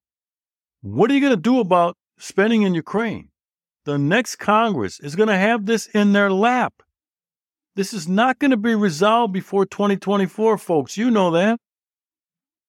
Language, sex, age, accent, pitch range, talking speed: English, male, 60-79, American, 135-210 Hz, 160 wpm